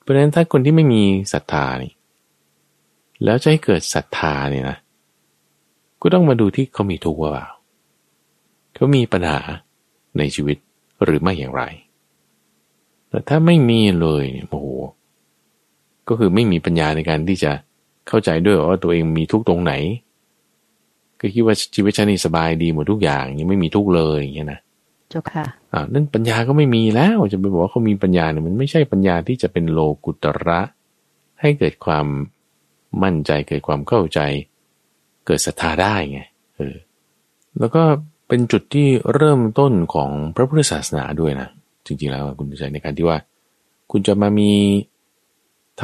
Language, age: Thai, 20-39